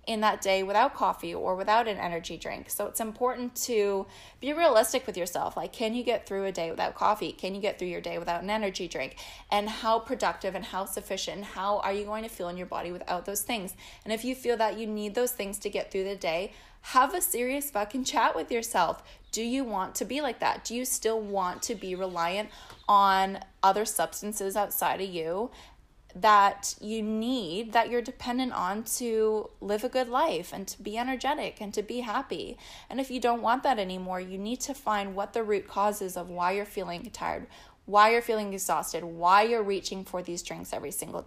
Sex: female